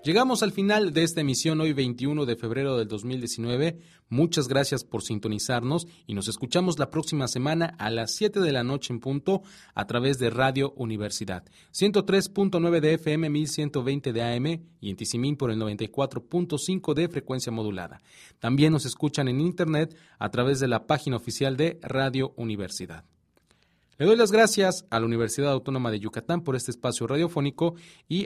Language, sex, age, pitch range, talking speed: English, male, 30-49, 115-160 Hz, 170 wpm